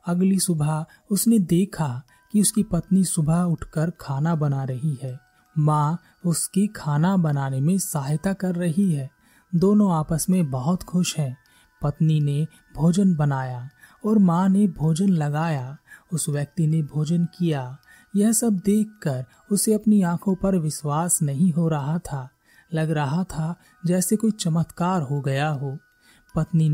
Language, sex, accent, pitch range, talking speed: Hindi, male, native, 145-185 Hz, 145 wpm